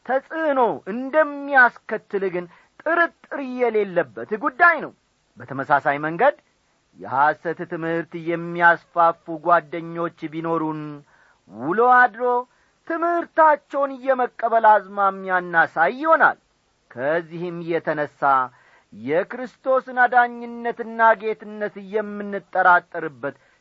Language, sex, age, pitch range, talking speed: Amharic, male, 40-59, 160-240 Hz, 60 wpm